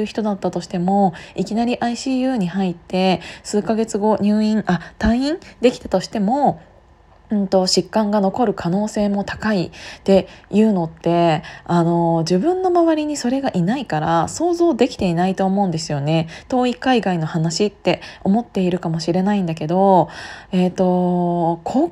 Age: 20-39